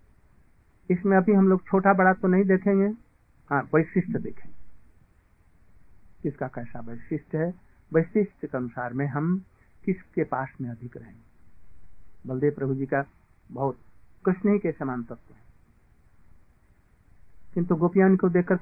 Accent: native